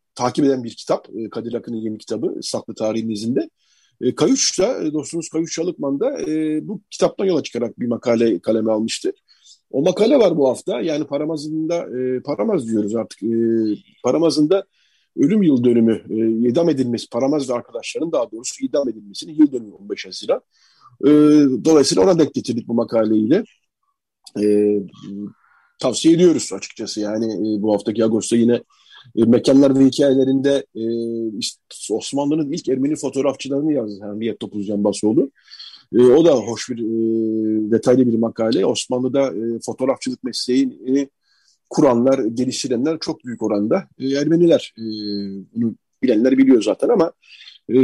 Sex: male